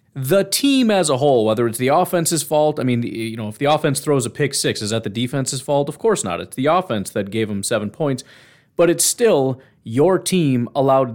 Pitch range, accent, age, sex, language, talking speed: 115-155 Hz, American, 30-49, male, English, 230 wpm